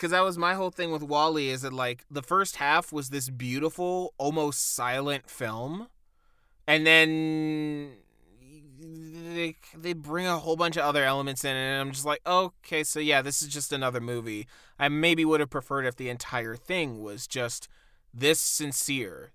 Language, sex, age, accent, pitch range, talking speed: English, male, 20-39, American, 120-155 Hz, 175 wpm